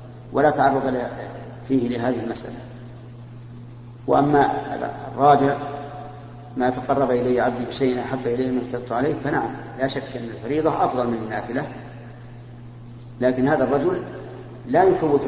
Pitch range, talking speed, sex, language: 120-135 Hz, 120 wpm, male, Arabic